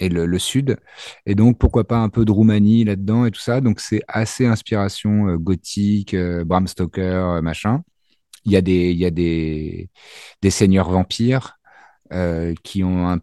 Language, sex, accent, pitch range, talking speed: French, male, French, 90-110 Hz, 190 wpm